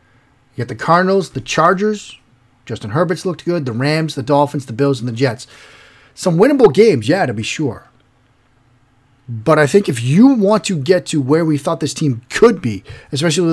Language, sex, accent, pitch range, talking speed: English, male, American, 125-160 Hz, 190 wpm